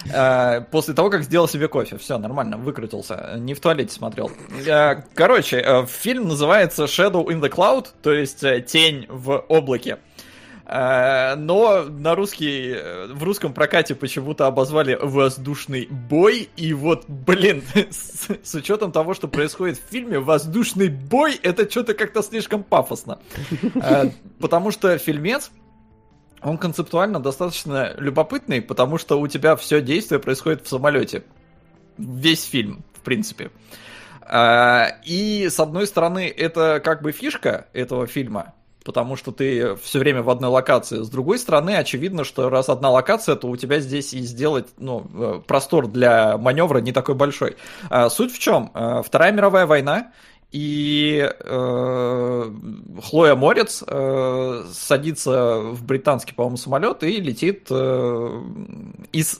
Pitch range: 130-170 Hz